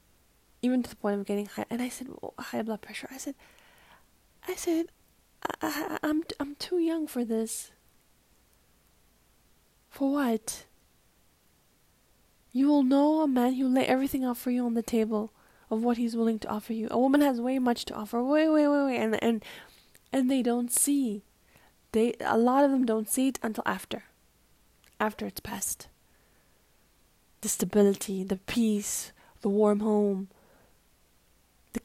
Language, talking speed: English, 160 wpm